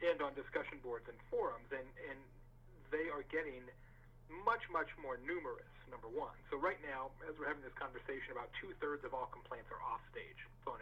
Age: 40-59